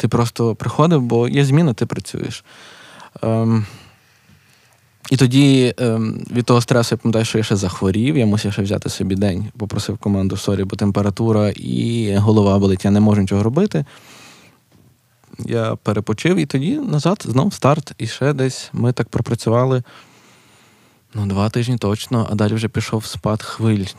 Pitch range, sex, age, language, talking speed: 105-125 Hz, male, 20-39, Ukrainian, 160 wpm